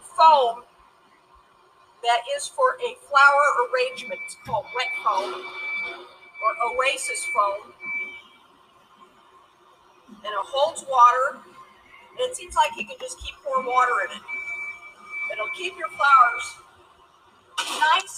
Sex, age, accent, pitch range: female, 50-69, American, 235-345 Hz